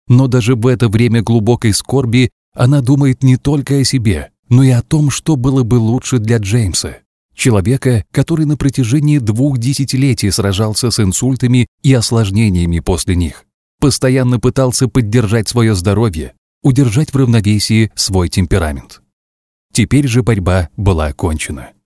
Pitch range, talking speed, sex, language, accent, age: 100-130 Hz, 140 wpm, male, Russian, native, 30-49